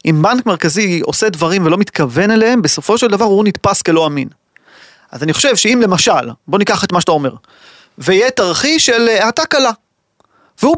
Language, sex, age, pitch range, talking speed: Hebrew, male, 30-49, 175-235 Hz, 185 wpm